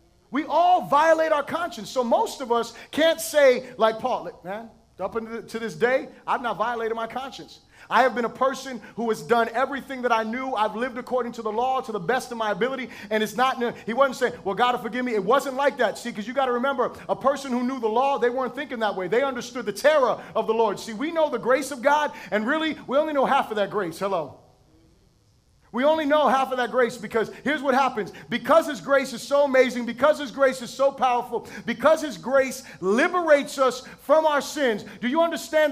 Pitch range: 230-280 Hz